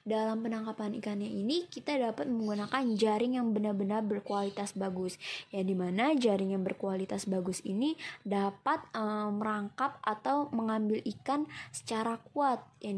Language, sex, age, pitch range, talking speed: Indonesian, female, 20-39, 195-240 Hz, 130 wpm